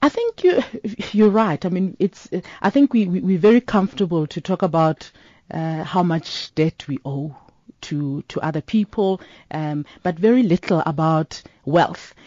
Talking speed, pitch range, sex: 165 wpm, 165-210 Hz, female